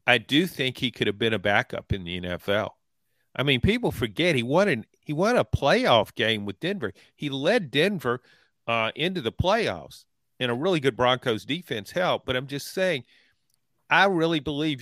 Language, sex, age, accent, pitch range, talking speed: English, male, 50-69, American, 115-145 Hz, 190 wpm